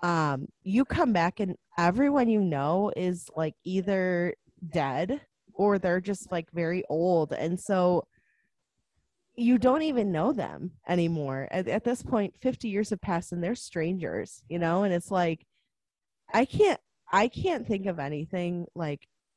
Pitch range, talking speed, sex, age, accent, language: 160-210 Hz, 155 wpm, female, 20-39, American, English